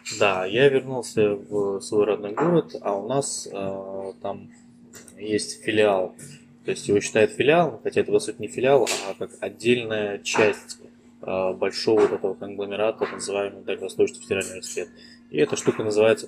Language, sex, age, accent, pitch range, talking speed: Russian, male, 20-39, native, 105-135 Hz, 155 wpm